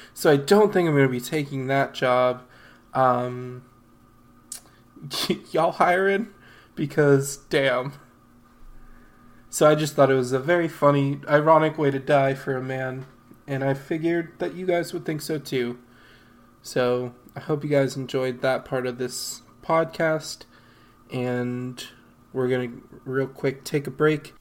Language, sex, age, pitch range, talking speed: English, male, 20-39, 120-140 Hz, 150 wpm